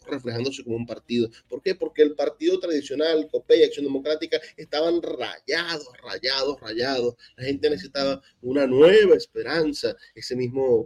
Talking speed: 145 wpm